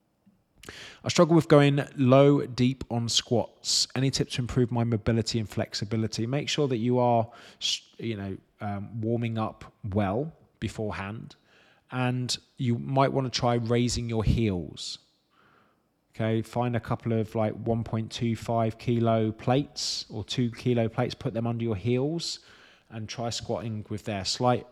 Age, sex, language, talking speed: 20-39, male, English, 150 wpm